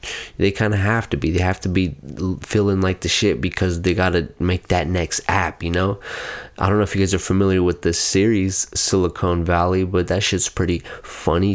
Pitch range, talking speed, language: 90-105 Hz, 220 wpm, English